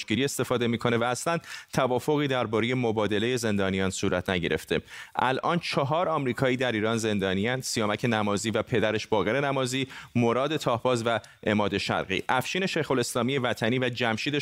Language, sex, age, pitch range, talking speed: Persian, male, 30-49, 110-135 Hz, 145 wpm